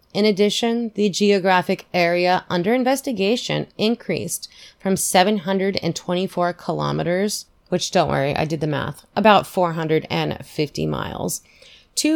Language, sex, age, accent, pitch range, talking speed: English, female, 30-49, American, 155-190 Hz, 110 wpm